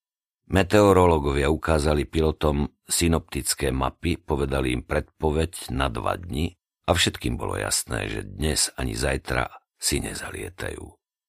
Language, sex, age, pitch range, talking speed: Slovak, male, 50-69, 65-80 Hz, 110 wpm